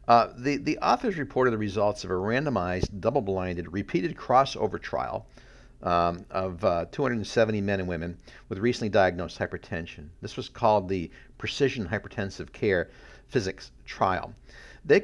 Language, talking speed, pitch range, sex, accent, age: English, 140 wpm, 100-130 Hz, male, American, 50-69